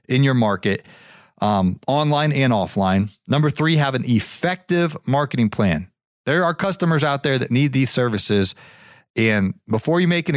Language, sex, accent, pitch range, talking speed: English, male, American, 110-150 Hz, 160 wpm